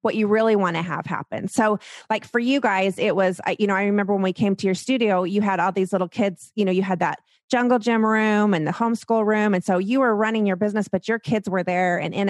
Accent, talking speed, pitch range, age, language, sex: American, 275 wpm, 190-235 Hz, 30-49, English, female